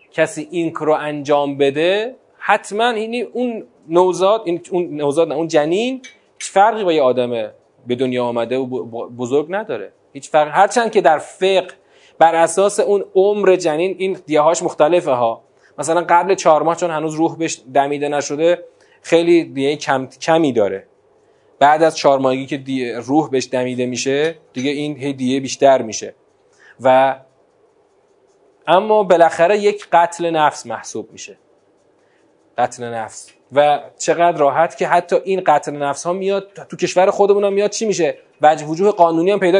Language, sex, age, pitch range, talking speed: Persian, male, 30-49, 145-205 Hz, 145 wpm